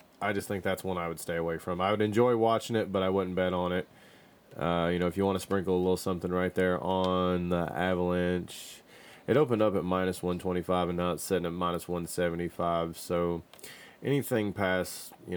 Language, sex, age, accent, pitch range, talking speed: English, male, 30-49, American, 85-95 Hz, 210 wpm